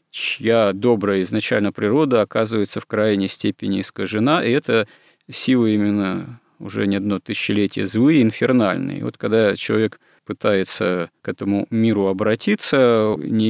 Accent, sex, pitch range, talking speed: native, male, 100-120 Hz, 125 wpm